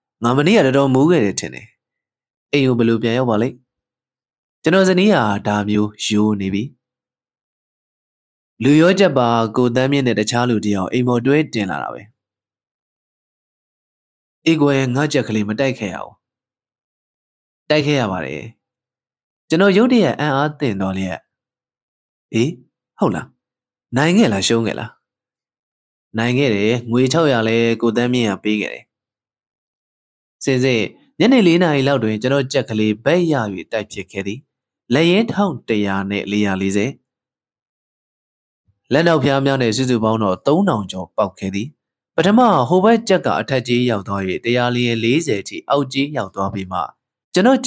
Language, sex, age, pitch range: English, male, 20-39, 105-140 Hz